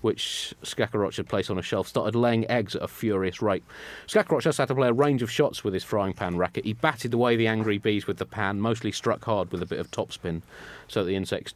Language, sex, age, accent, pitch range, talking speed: English, male, 30-49, British, 100-120 Hz, 255 wpm